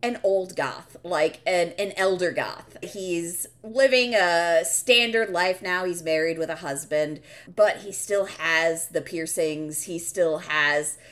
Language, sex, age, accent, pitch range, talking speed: English, female, 30-49, American, 155-215 Hz, 150 wpm